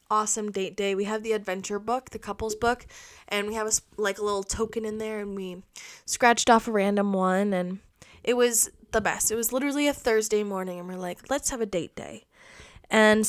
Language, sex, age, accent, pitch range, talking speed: English, female, 10-29, American, 205-245 Hz, 215 wpm